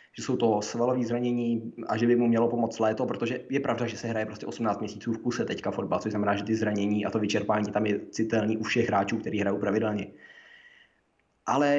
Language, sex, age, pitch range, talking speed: Czech, male, 20-39, 110-125 Hz, 220 wpm